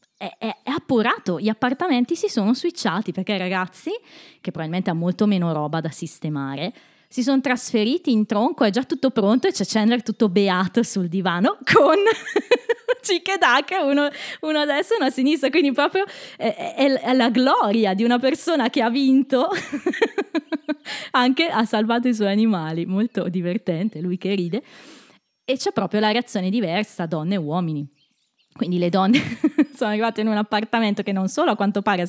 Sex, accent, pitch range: female, native, 185-255 Hz